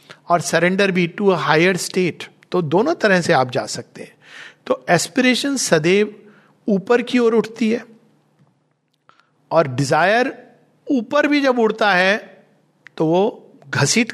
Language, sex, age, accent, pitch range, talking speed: Hindi, male, 50-69, native, 155-215 Hz, 135 wpm